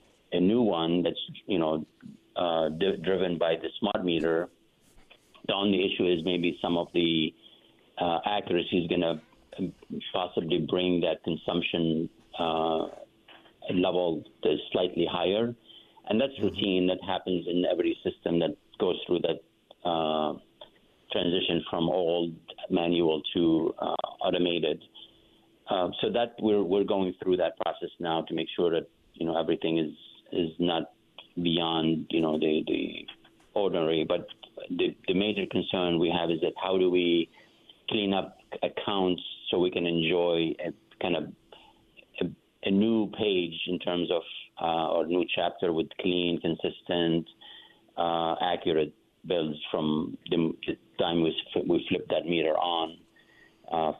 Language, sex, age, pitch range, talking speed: English, male, 50-69, 80-90 Hz, 145 wpm